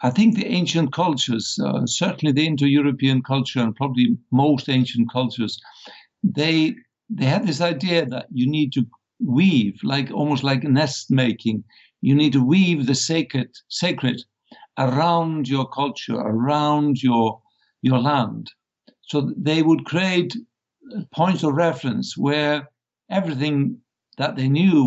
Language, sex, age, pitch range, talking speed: English, male, 60-79, 125-160 Hz, 135 wpm